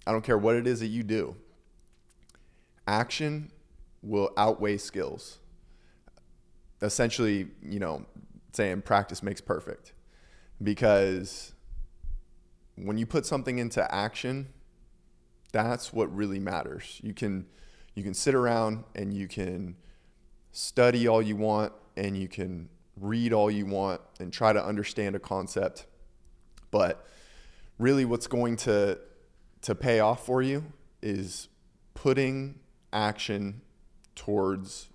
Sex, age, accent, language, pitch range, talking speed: male, 20-39, American, English, 95-115 Hz, 120 wpm